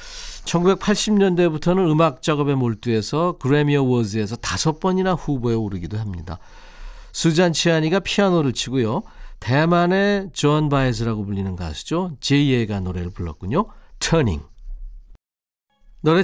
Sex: male